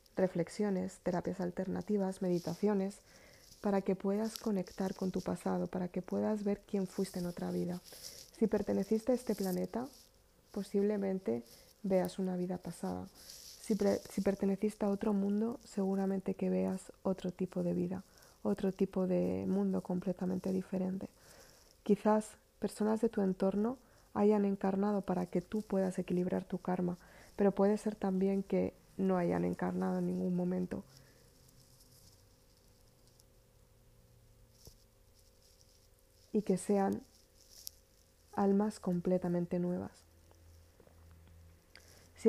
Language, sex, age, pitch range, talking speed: Spanish, female, 20-39, 175-200 Hz, 115 wpm